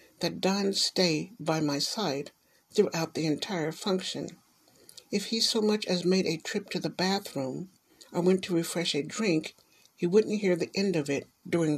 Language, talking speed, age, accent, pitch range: English, 180 wpm, 60-79, American, 155-200 Hz